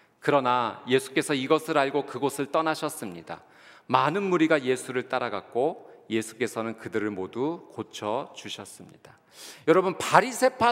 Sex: male